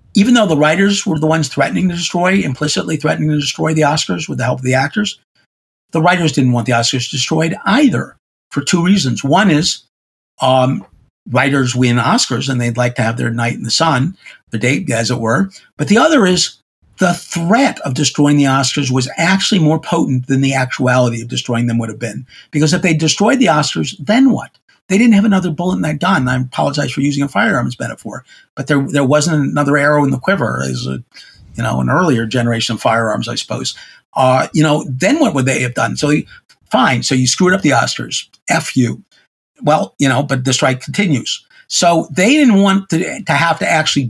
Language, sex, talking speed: English, male, 210 wpm